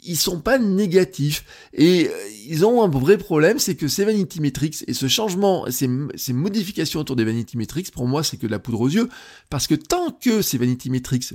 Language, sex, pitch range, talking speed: French, male, 130-185 Hz, 215 wpm